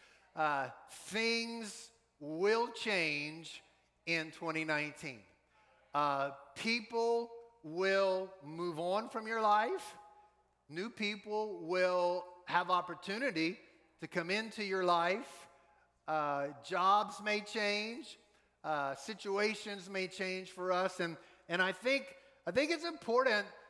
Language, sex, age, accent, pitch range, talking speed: English, male, 50-69, American, 170-215 Hz, 105 wpm